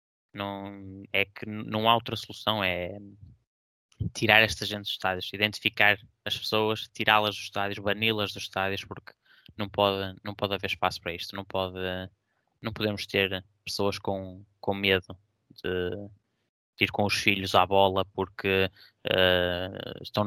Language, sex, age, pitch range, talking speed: Portuguese, male, 20-39, 95-105 Hz, 140 wpm